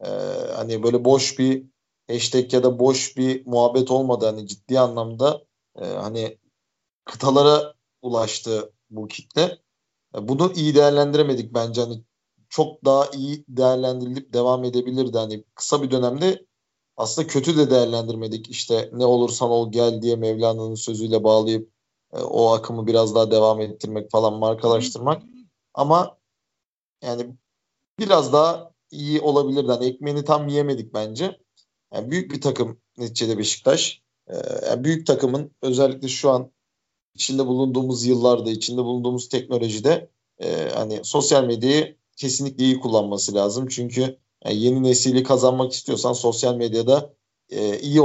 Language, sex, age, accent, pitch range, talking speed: Turkish, male, 40-59, native, 115-140 Hz, 130 wpm